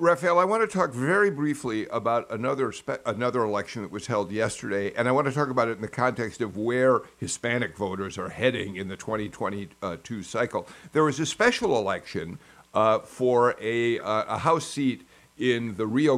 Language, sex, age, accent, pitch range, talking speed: English, male, 50-69, American, 110-145 Hz, 195 wpm